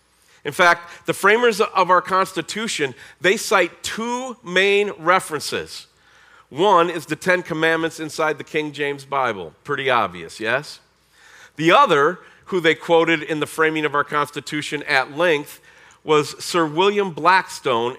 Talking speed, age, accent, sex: 140 wpm, 40-59, American, male